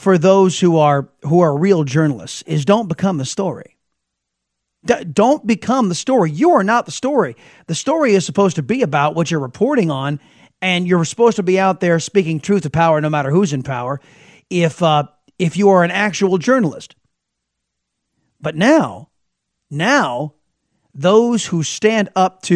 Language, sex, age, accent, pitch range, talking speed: English, male, 40-59, American, 150-210 Hz, 175 wpm